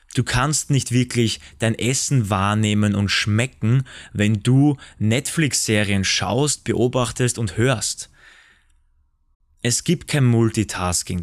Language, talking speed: German, 105 wpm